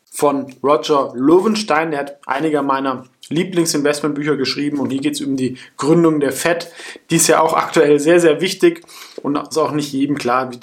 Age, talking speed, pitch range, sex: 20-39, 190 wpm, 130-155 Hz, male